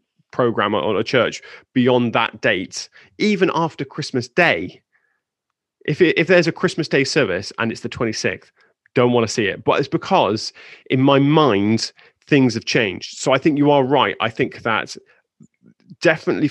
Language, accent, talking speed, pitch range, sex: English, British, 170 wpm, 110-140 Hz, male